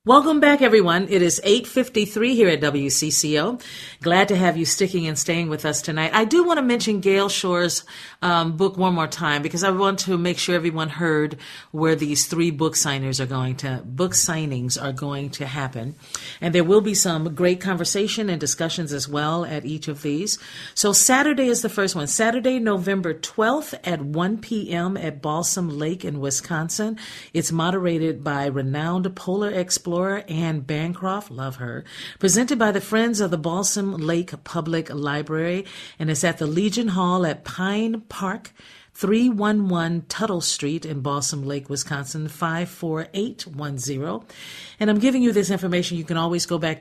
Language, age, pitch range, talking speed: English, 50-69, 155-200 Hz, 170 wpm